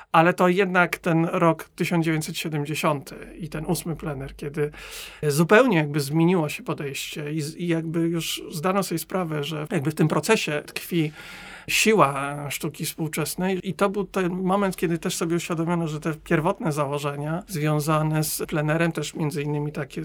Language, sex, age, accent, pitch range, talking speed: Polish, male, 50-69, native, 150-170 Hz, 160 wpm